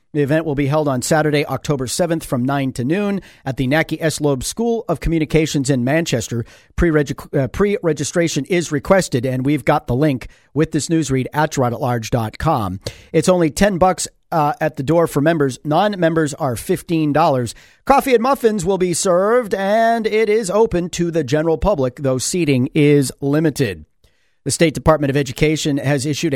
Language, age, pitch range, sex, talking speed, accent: English, 40-59, 135-170 Hz, male, 175 wpm, American